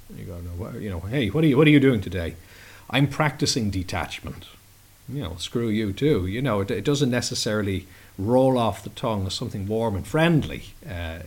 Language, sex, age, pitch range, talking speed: English, male, 40-59, 90-115 Hz, 210 wpm